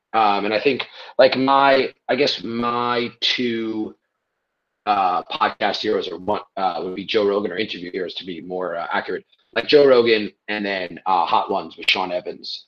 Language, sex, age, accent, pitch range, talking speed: English, male, 30-49, American, 105-130 Hz, 185 wpm